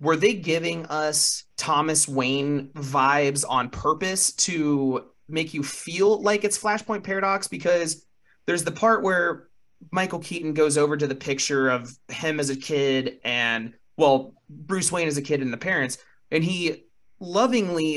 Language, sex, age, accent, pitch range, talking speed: English, male, 30-49, American, 135-170 Hz, 155 wpm